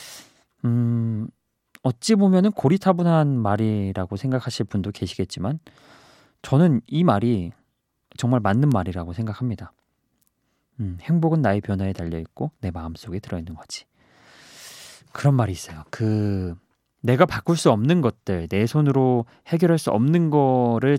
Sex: male